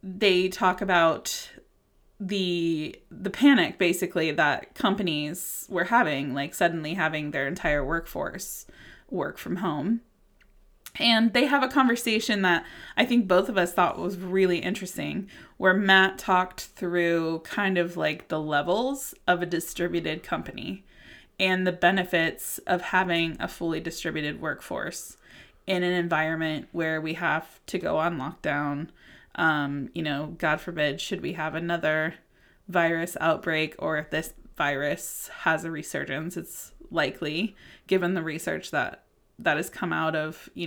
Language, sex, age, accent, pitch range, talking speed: English, female, 20-39, American, 160-190 Hz, 145 wpm